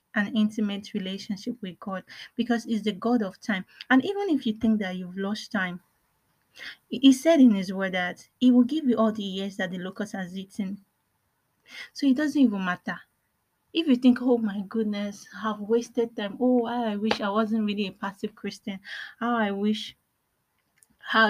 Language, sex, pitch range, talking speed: English, female, 200-240 Hz, 185 wpm